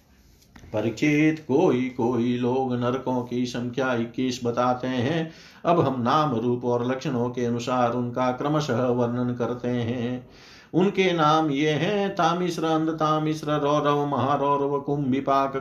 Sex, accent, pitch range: male, native, 125-150 Hz